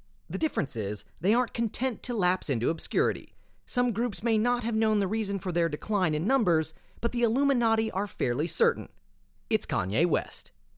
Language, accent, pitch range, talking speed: English, American, 175-235 Hz, 180 wpm